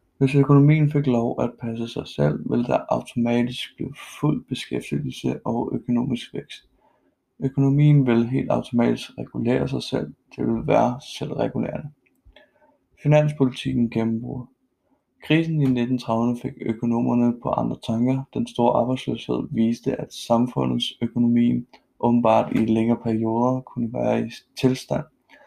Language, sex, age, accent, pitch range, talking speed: Danish, male, 20-39, native, 115-130 Hz, 125 wpm